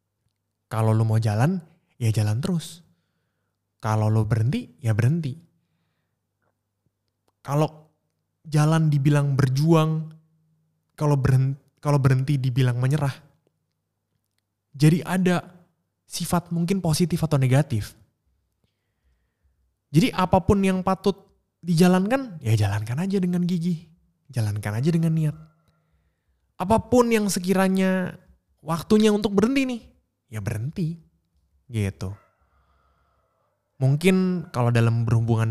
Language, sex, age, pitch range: Indonesian, male, 20-39, 110-165 Hz